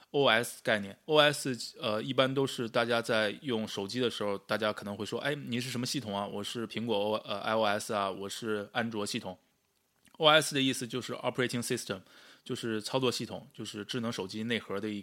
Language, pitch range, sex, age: Chinese, 105-125 Hz, male, 20-39